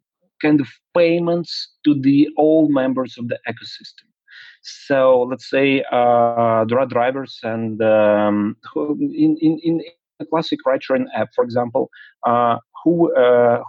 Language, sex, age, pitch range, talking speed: English, male, 30-49, 120-165 Hz, 135 wpm